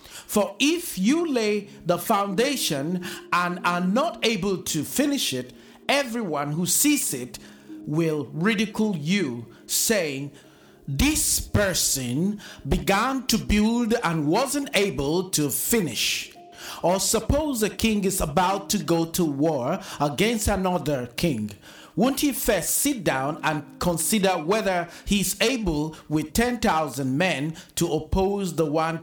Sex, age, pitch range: male, 50-69, 150-220 Hz